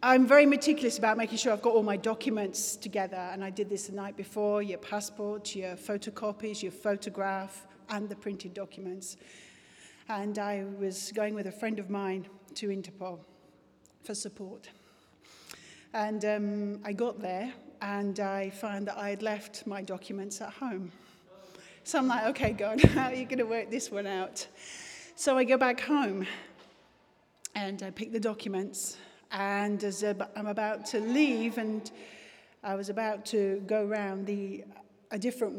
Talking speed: 165 wpm